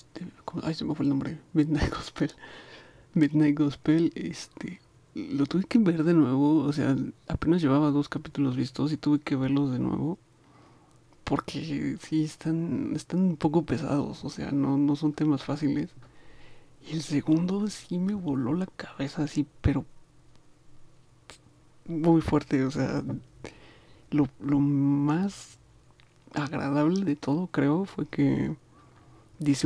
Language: Spanish